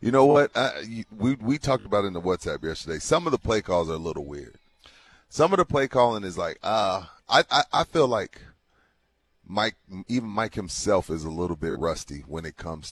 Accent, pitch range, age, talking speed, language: American, 90-125 Hz, 30-49, 230 wpm, English